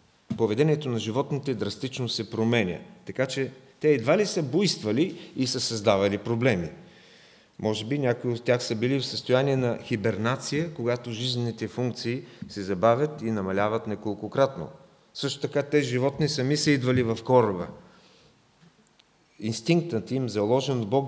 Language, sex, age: English, male, 40-59